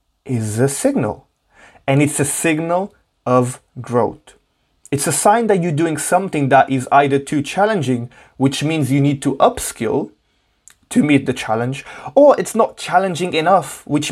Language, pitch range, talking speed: English, 125-155 Hz, 155 wpm